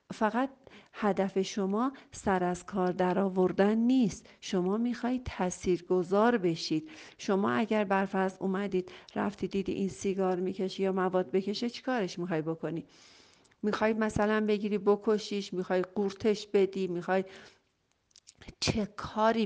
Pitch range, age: 175-205 Hz, 50-69